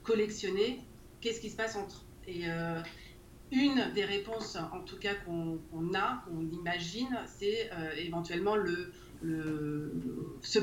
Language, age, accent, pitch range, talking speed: French, 30-49, French, 165-210 Hz, 140 wpm